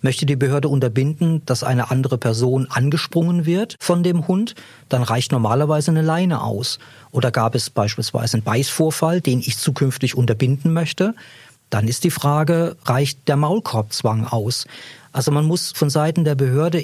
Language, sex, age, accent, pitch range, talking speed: German, male, 40-59, German, 125-160 Hz, 160 wpm